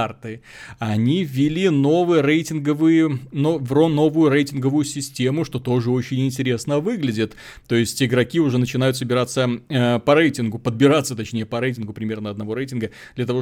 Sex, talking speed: male, 150 wpm